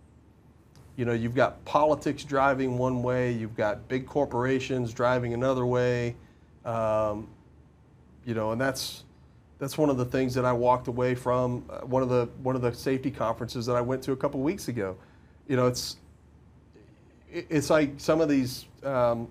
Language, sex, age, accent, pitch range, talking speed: English, male, 40-59, American, 120-140 Hz, 175 wpm